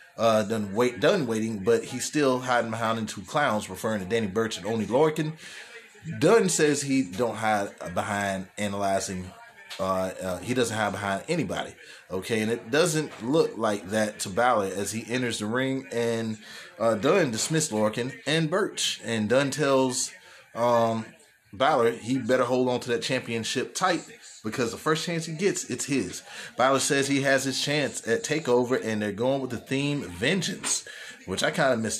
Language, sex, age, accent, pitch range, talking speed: English, male, 20-39, American, 105-135 Hz, 180 wpm